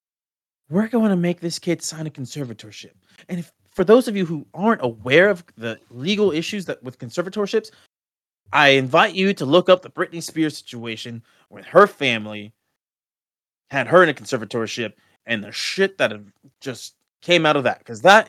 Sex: male